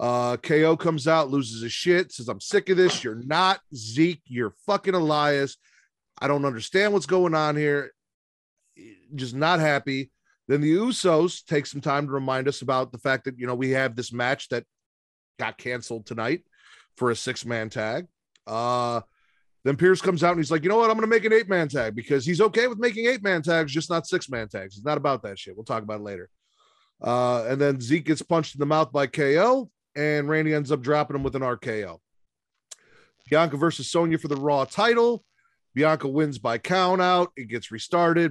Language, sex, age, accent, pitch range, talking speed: English, male, 30-49, American, 130-175 Hz, 205 wpm